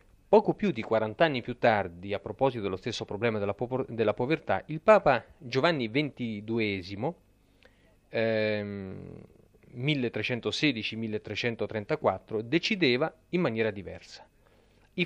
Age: 40-59